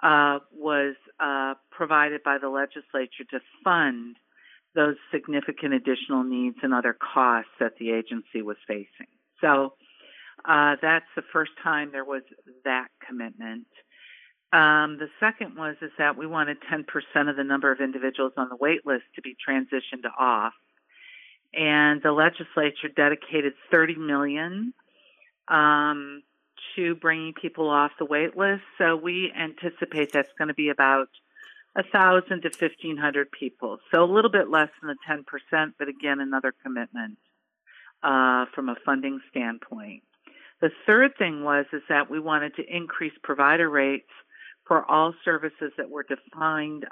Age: 50-69